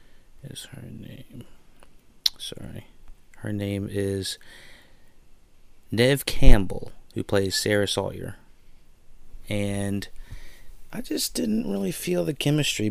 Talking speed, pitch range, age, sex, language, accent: 100 wpm, 95-110 Hz, 30-49, male, English, American